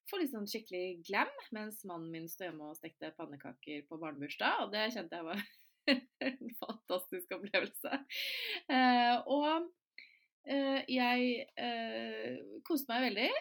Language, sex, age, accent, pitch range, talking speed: English, female, 20-39, Swedish, 180-265 Hz, 130 wpm